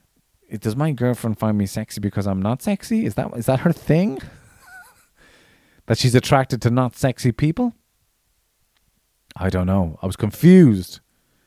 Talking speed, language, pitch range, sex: 150 wpm, English, 105-140 Hz, male